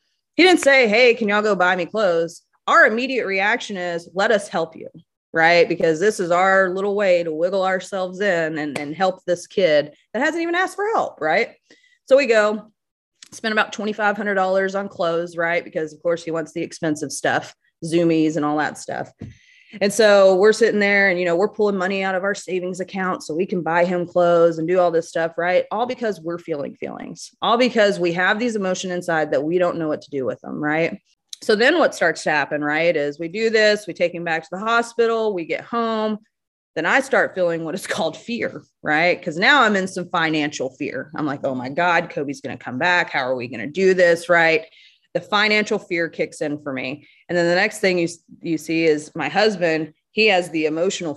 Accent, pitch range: American, 160-205 Hz